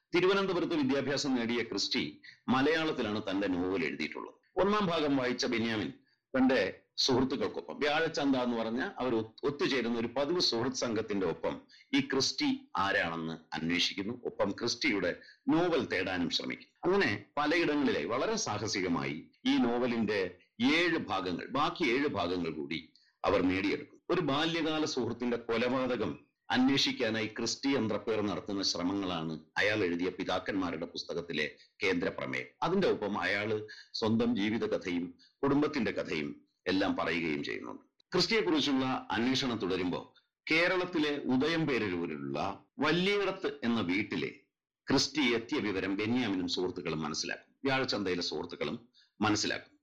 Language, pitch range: Malayalam, 100-150 Hz